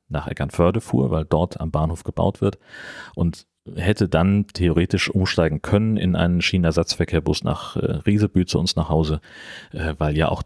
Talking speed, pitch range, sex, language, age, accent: 155 wpm, 75-90 Hz, male, German, 40-59, German